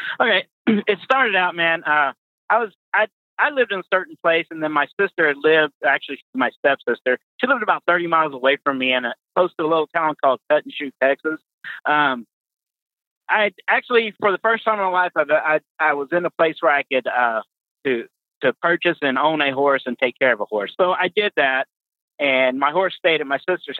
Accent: American